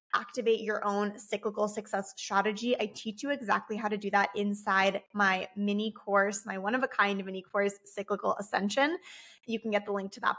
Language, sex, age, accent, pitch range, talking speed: English, female, 20-39, American, 205-240 Hz, 180 wpm